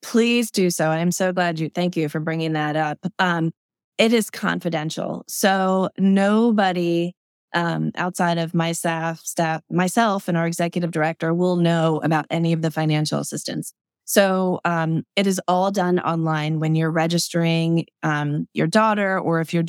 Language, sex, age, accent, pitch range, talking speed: English, female, 20-39, American, 160-190 Hz, 165 wpm